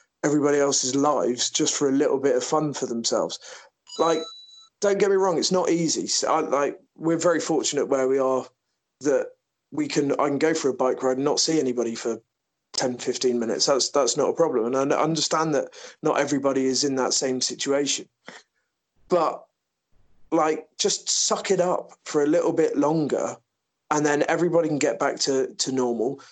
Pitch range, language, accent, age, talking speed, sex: 130-165 Hz, English, British, 20-39, 190 wpm, male